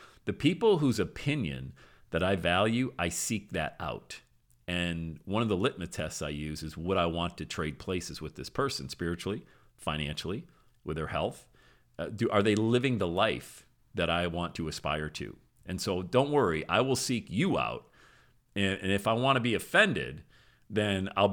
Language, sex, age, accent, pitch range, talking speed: English, male, 40-59, American, 85-125 Hz, 185 wpm